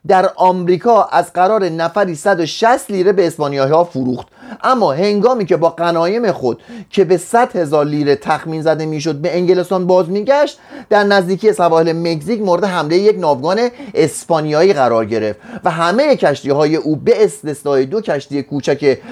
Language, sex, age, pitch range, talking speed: Persian, male, 30-49, 155-215 Hz, 155 wpm